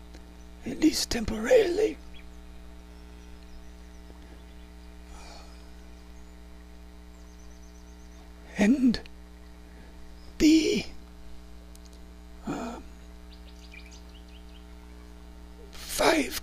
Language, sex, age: English, male, 60-79